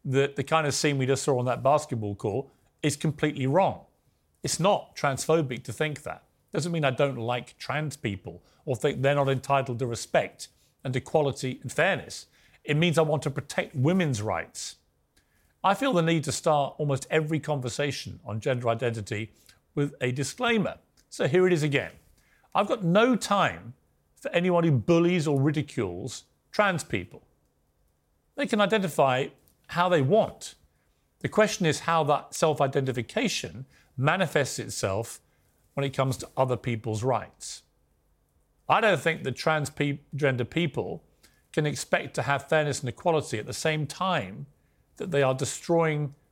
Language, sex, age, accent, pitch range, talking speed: English, male, 40-59, British, 125-165 Hz, 160 wpm